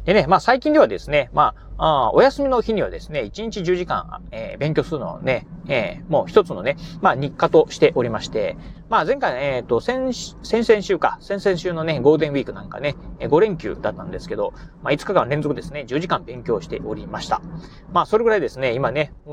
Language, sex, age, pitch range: Japanese, male, 30-49, 155-220 Hz